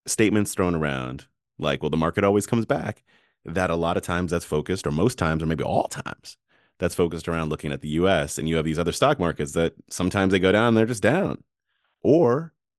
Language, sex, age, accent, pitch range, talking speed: English, male, 30-49, American, 85-115 Hz, 220 wpm